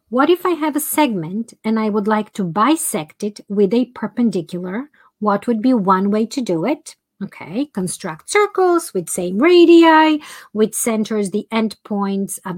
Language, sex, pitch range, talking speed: English, female, 200-265 Hz, 165 wpm